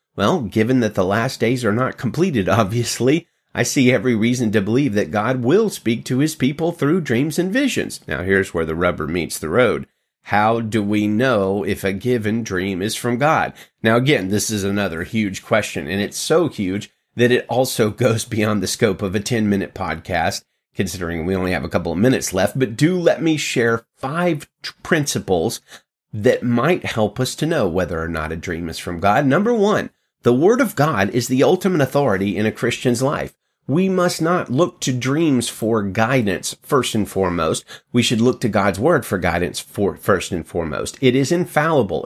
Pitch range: 100-150 Hz